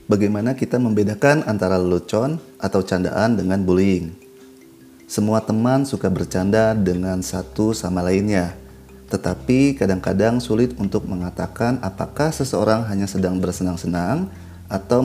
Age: 30-49